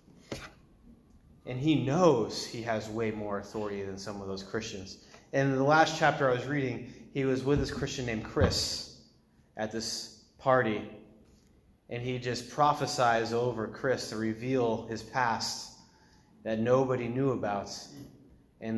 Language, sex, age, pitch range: English, male, 30-49, 110-145 Hz